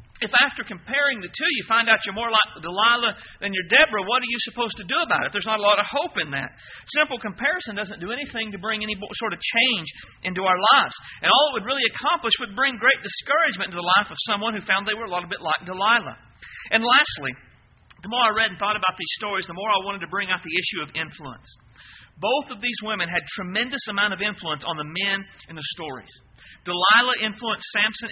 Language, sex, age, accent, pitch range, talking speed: English, male, 40-59, American, 165-230 Hz, 235 wpm